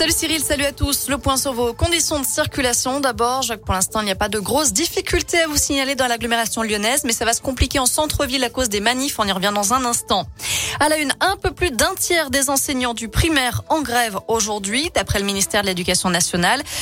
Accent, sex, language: French, female, French